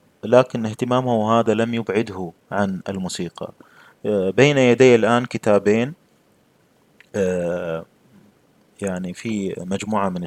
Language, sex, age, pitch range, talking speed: Arabic, male, 30-49, 90-110 Hz, 100 wpm